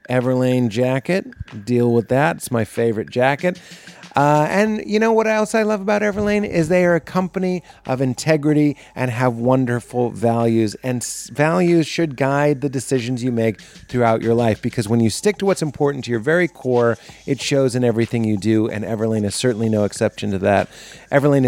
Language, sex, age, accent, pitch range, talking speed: English, male, 30-49, American, 115-145 Hz, 185 wpm